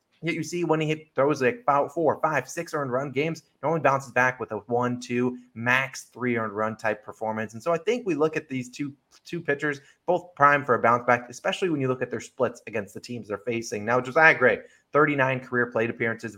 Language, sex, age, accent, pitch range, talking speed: English, male, 20-39, American, 115-145 Hz, 240 wpm